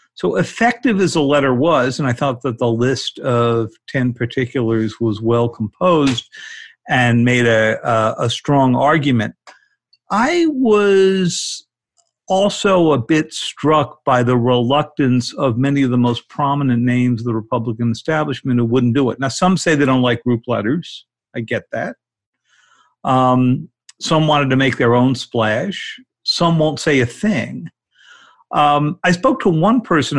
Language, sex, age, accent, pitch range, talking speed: English, male, 50-69, American, 120-170 Hz, 155 wpm